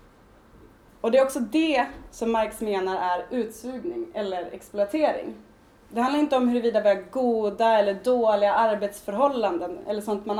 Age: 20-39